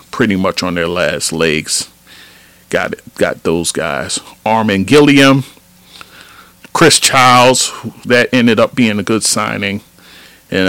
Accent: American